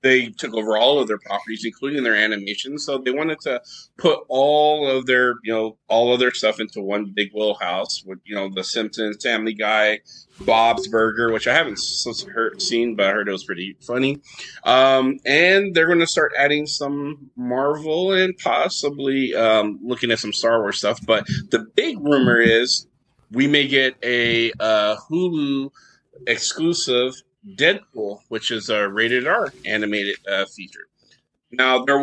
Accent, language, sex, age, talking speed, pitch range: American, English, male, 30-49, 170 wpm, 110-140 Hz